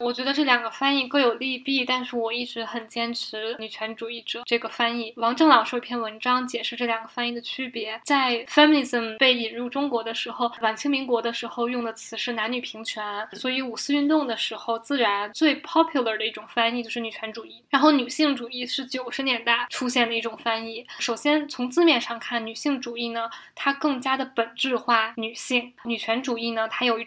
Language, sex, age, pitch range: Chinese, female, 10-29, 225-260 Hz